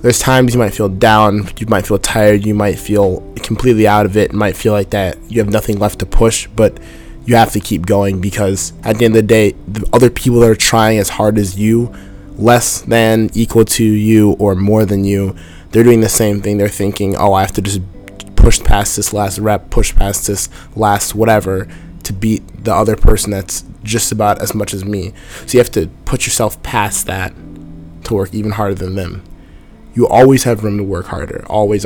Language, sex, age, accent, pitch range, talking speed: English, male, 20-39, American, 95-110 Hz, 215 wpm